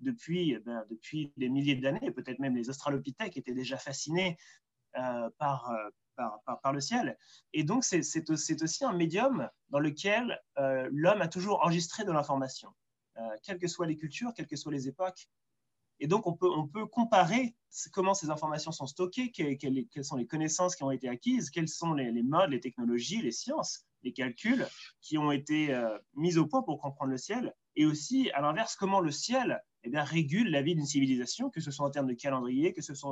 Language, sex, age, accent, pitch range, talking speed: French, male, 20-39, French, 130-165 Hz, 210 wpm